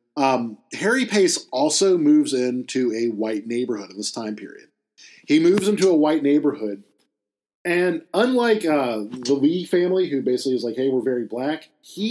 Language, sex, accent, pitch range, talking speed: English, male, American, 120-160 Hz, 170 wpm